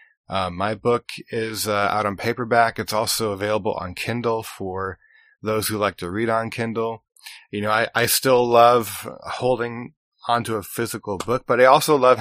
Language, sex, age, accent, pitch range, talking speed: English, male, 20-39, American, 100-115 Hz, 175 wpm